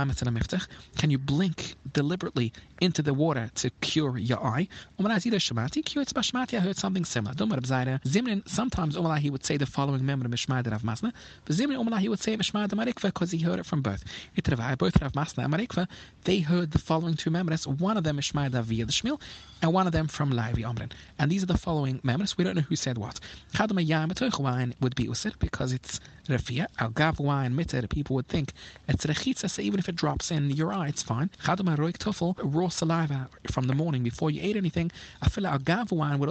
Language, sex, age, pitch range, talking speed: English, male, 30-49, 130-180 Hz, 165 wpm